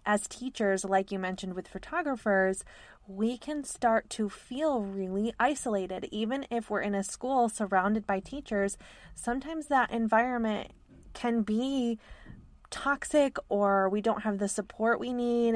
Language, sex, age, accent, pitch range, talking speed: English, female, 20-39, American, 195-235 Hz, 145 wpm